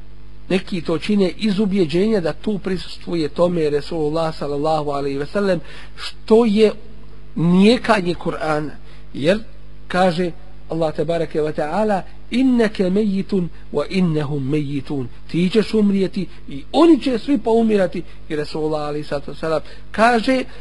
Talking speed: 115 wpm